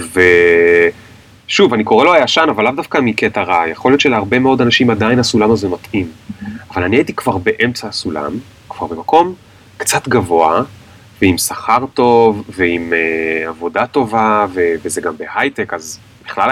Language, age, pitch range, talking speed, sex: Hebrew, 30-49, 95-125 Hz, 155 wpm, male